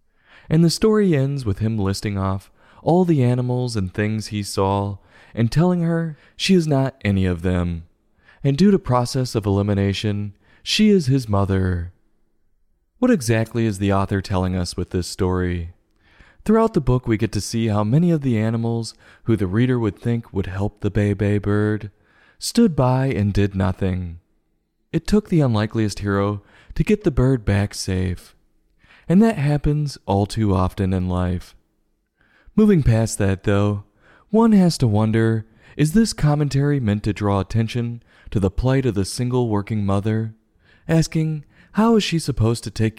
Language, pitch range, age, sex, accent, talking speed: English, 100-140 Hz, 20-39, male, American, 170 wpm